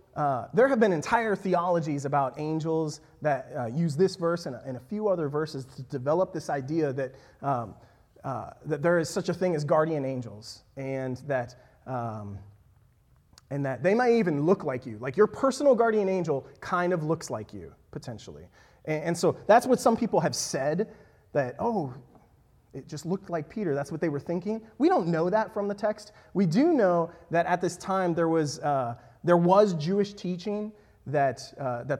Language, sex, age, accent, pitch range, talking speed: English, male, 30-49, American, 125-175 Hz, 195 wpm